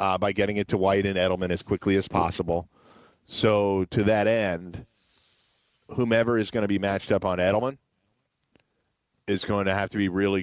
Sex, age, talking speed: male, 40-59, 185 wpm